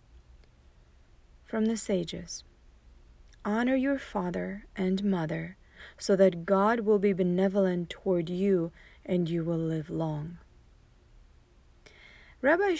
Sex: female